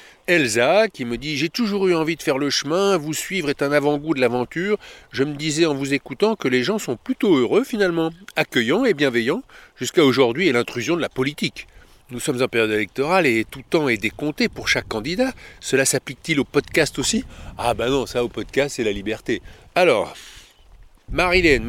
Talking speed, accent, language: 195 wpm, French, French